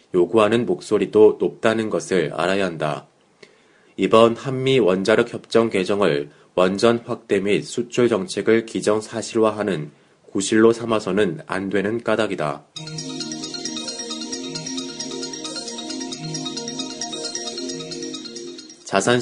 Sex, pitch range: male, 95-120 Hz